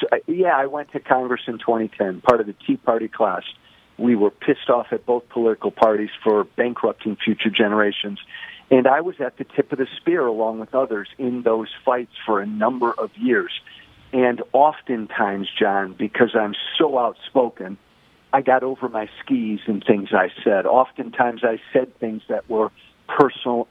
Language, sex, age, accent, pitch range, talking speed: English, male, 50-69, American, 110-135 Hz, 170 wpm